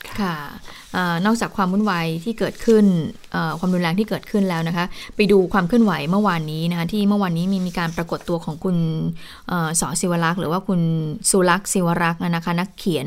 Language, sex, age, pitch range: Thai, female, 20-39, 170-220 Hz